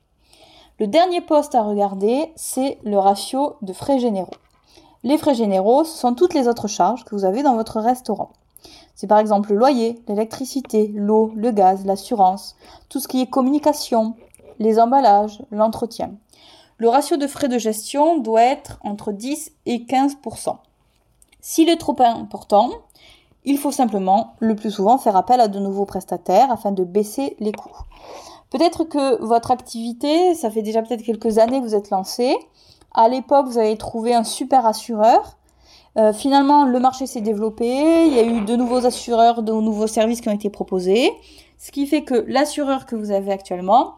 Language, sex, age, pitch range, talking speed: French, female, 20-39, 215-275 Hz, 175 wpm